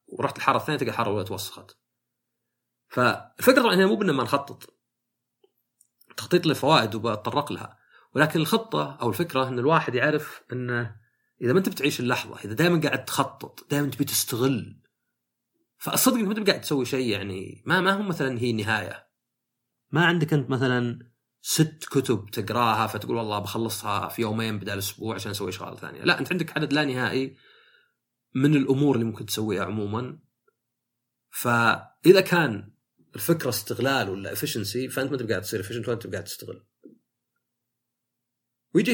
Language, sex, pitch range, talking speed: Arabic, male, 110-155 Hz, 150 wpm